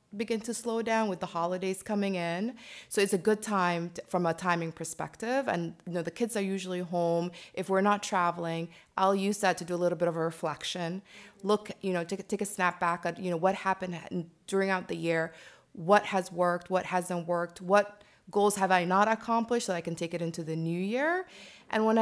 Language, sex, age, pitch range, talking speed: English, female, 20-39, 170-200 Hz, 220 wpm